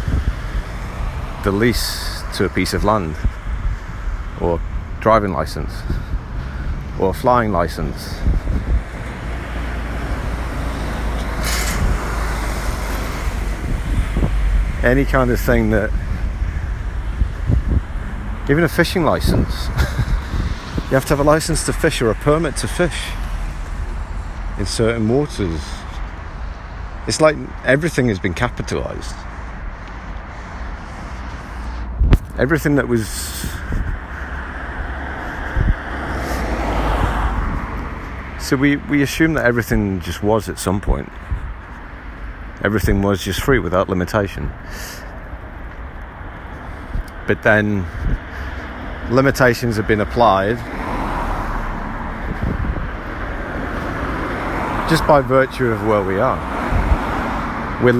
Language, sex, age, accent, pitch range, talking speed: English, male, 50-69, British, 75-110 Hz, 80 wpm